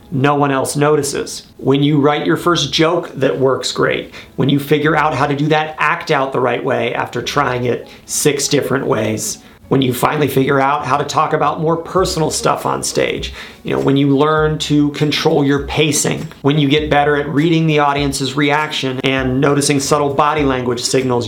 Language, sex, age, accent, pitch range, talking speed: English, male, 30-49, American, 135-155 Hz, 195 wpm